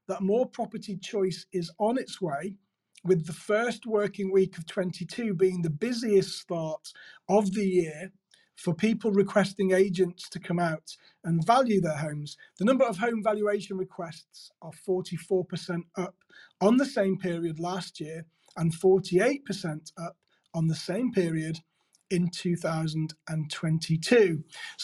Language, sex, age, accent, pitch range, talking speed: English, male, 30-49, British, 175-220 Hz, 140 wpm